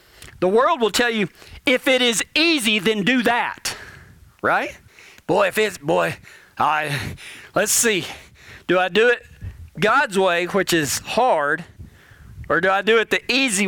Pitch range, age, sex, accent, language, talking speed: 180-235 Hz, 40-59, male, American, English, 160 wpm